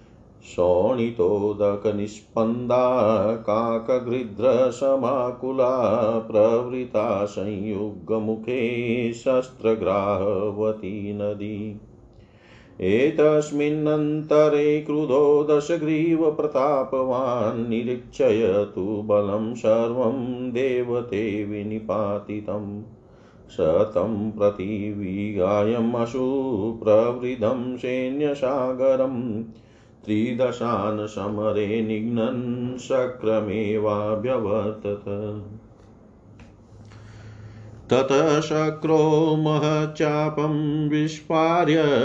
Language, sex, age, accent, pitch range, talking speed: Hindi, male, 40-59, native, 105-130 Hz, 35 wpm